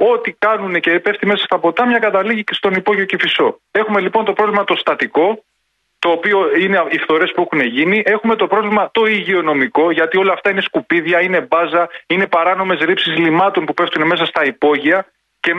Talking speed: 185 wpm